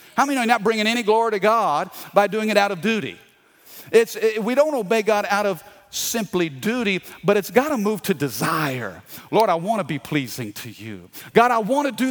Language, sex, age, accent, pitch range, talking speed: English, male, 40-59, American, 155-220 Hz, 225 wpm